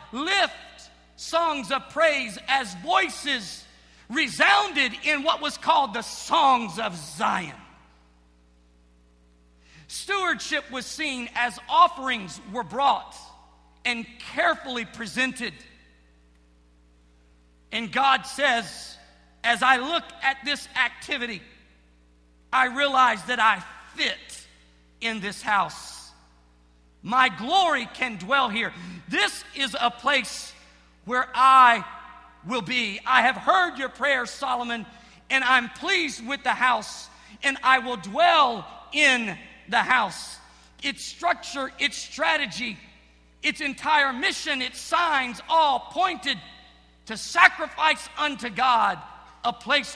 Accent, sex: American, male